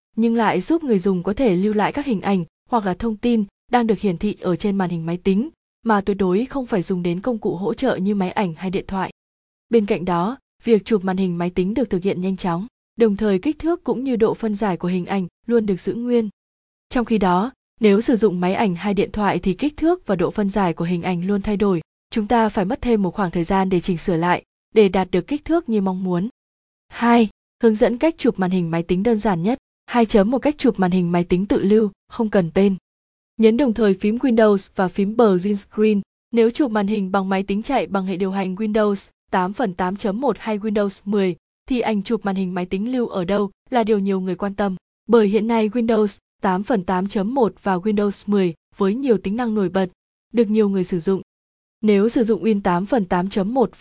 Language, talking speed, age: Vietnamese, 235 wpm, 20-39